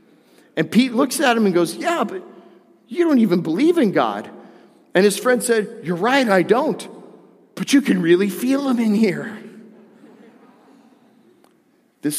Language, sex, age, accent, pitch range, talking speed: English, male, 40-59, American, 155-225 Hz, 160 wpm